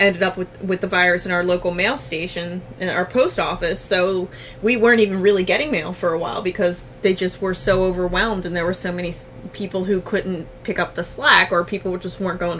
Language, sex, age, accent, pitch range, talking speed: English, female, 20-39, American, 170-230 Hz, 230 wpm